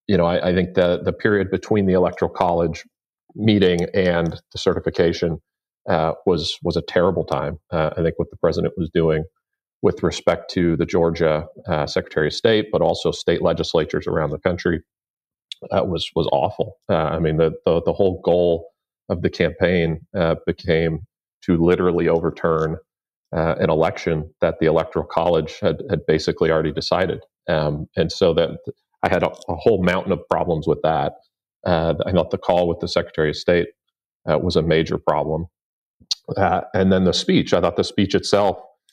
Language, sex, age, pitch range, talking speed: English, male, 40-59, 80-90 Hz, 180 wpm